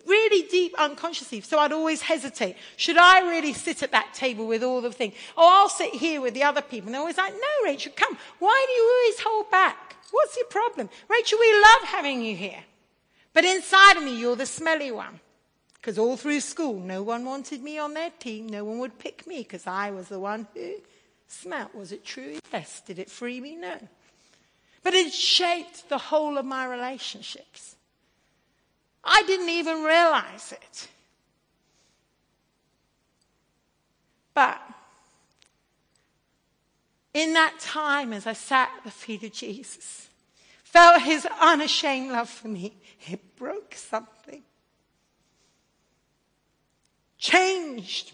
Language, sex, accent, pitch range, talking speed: English, female, British, 220-335 Hz, 155 wpm